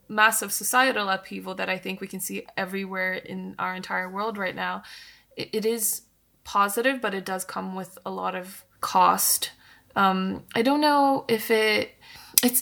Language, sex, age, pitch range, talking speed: Indonesian, female, 20-39, 190-215 Hz, 165 wpm